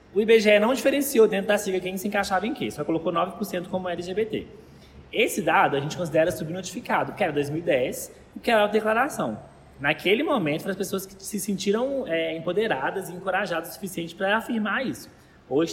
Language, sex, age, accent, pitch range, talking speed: Portuguese, male, 20-39, Brazilian, 150-200 Hz, 180 wpm